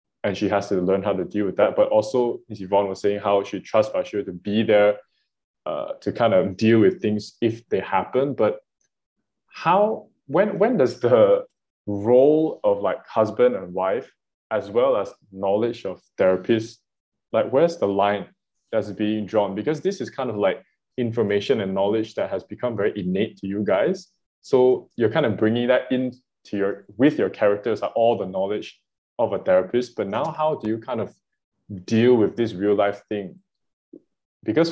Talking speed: 185 wpm